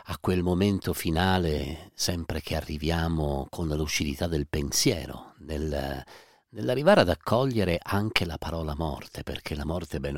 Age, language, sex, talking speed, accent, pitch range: 50-69, Italian, male, 135 wpm, native, 75-90 Hz